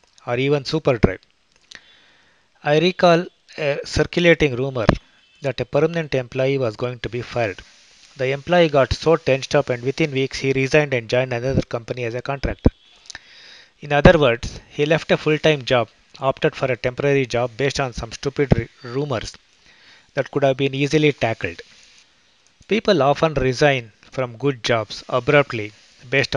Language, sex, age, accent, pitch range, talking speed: English, male, 20-39, Indian, 120-145 Hz, 155 wpm